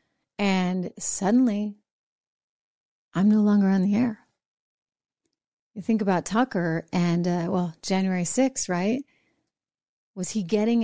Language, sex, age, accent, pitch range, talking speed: English, female, 30-49, American, 185-245 Hz, 115 wpm